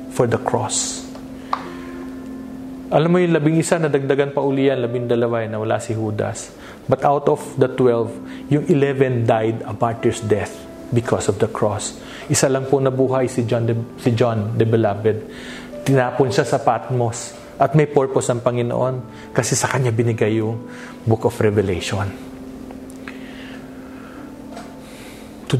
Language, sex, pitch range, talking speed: English, male, 115-145 Hz, 145 wpm